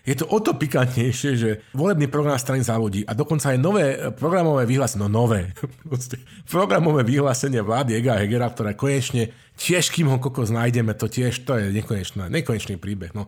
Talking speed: 170 wpm